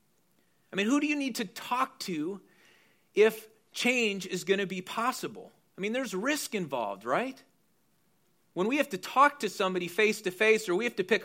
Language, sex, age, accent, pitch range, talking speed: English, male, 40-59, American, 180-225 Hz, 185 wpm